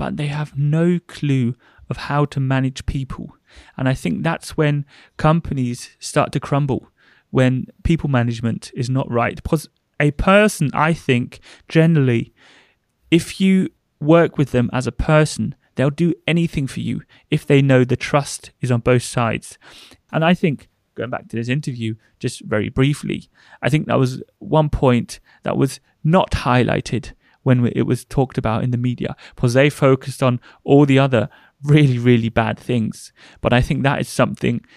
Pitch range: 120-150 Hz